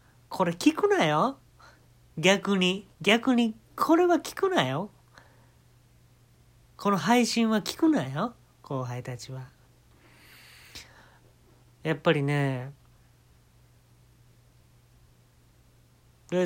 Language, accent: Japanese, native